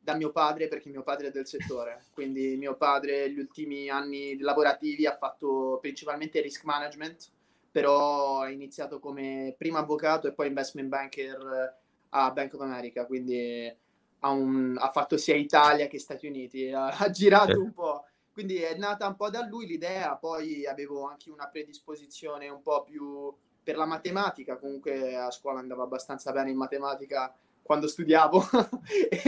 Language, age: Italian, 20-39